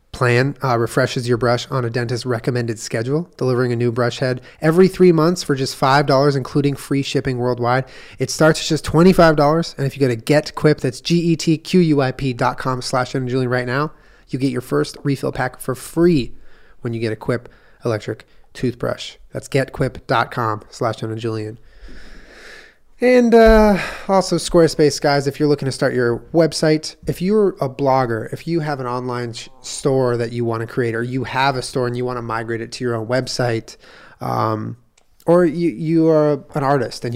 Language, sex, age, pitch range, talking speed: English, male, 30-49, 125-150 Hz, 195 wpm